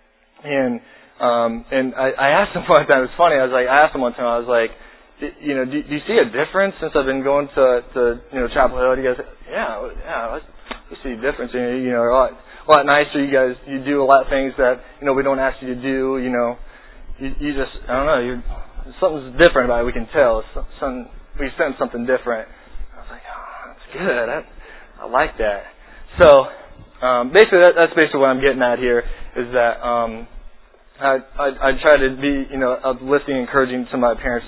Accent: American